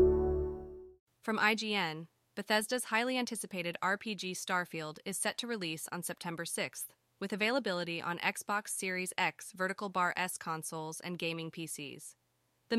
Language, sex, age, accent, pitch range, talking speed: English, female, 20-39, American, 185-215 Hz, 130 wpm